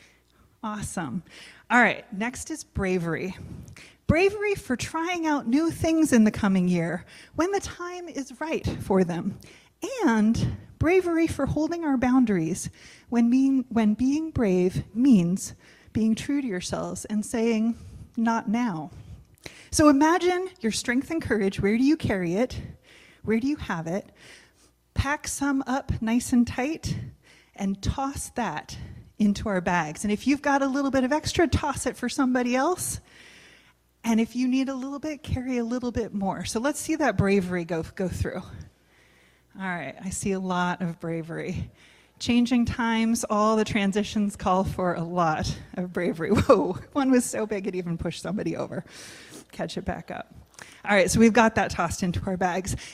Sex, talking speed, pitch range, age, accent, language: female, 165 wpm, 185-270 Hz, 30-49, American, English